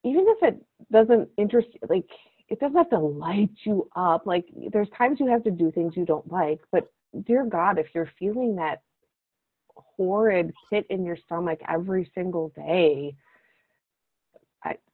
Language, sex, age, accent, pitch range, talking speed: English, female, 30-49, American, 160-215 Hz, 160 wpm